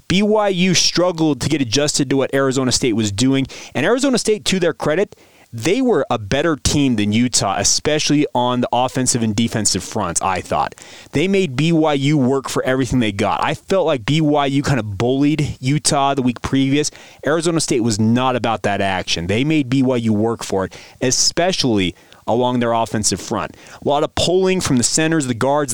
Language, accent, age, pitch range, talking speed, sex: English, American, 30-49, 115-150 Hz, 185 wpm, male